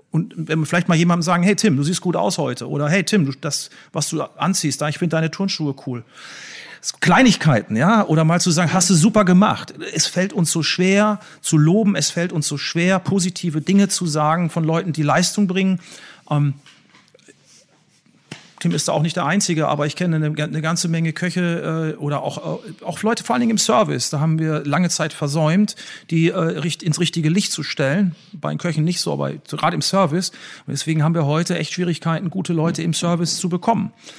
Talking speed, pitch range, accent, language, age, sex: 205 wpm, 150-185 Hz, German, German, 40-59, male